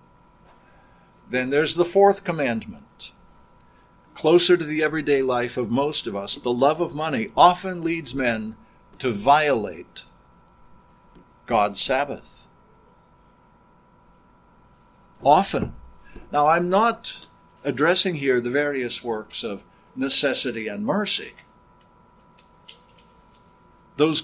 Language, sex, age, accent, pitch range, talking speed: English, male, 60-79, American, 125-175 Hz, 95 wpm